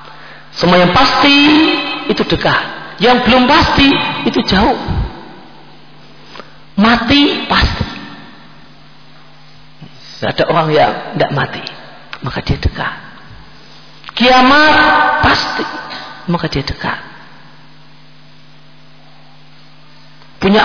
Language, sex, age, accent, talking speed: Indonesian, male, 50-69, native, 75 wpm